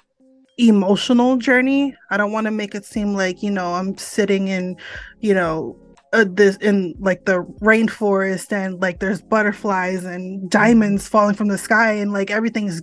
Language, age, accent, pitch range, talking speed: English, 20-39, American, 185-215 Hz, 170 wpm